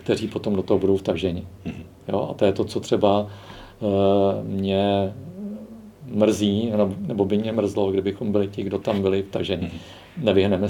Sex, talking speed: male, 165 wpm